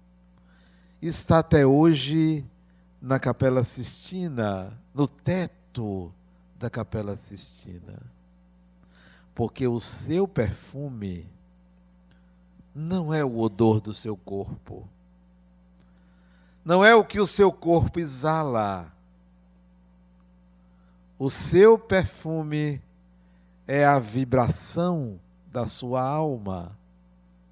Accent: Brazilian